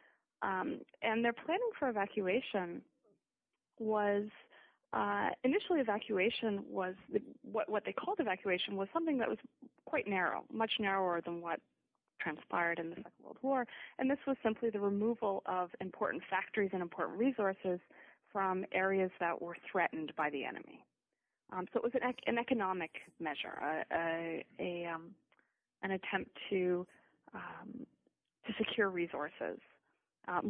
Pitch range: 180-235 Hz